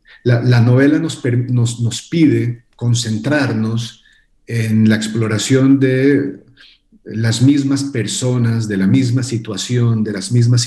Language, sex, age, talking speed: Portuguese, male, 50-69, 120 wpm